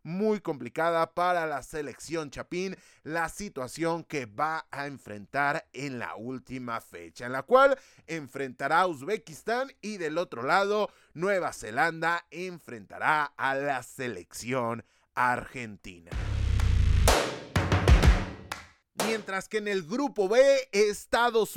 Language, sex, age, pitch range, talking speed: Spanish, male, 30-49, 140-205 Hz, 110 wpm